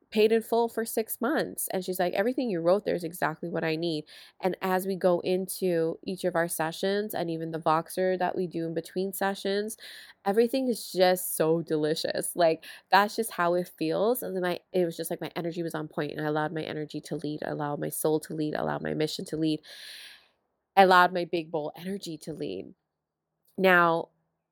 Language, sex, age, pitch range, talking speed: English, female, 20-39, 160-200 Hz, 210 wpm